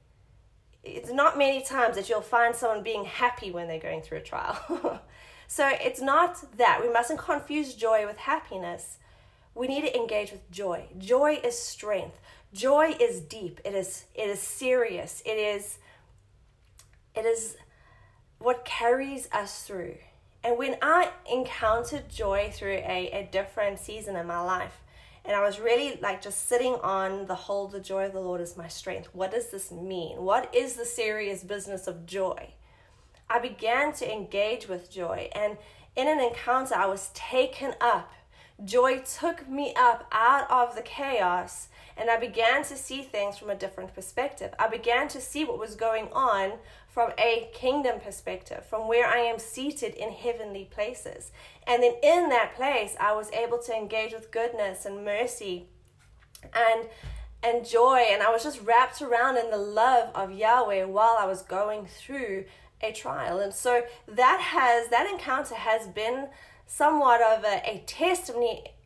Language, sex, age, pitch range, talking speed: English, female, 30-49, 200-255 Hz, 170 wpm